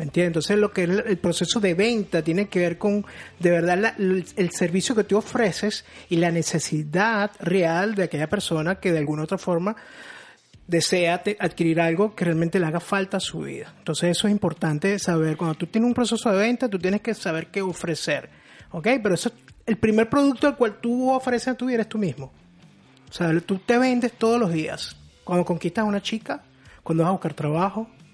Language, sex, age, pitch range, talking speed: Spanish, male, 30-49, 170-215 Hz, 205 wpm